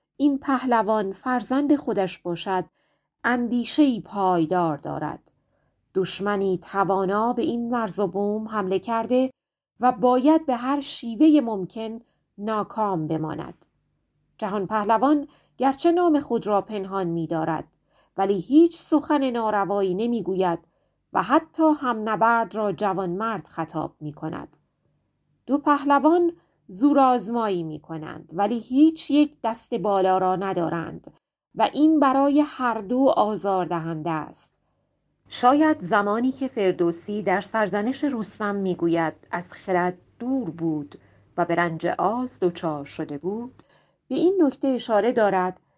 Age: 30-49